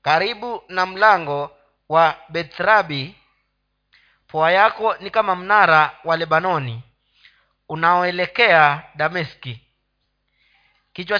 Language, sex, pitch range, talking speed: Swahili, male, 150-210 Hz, 80 wpm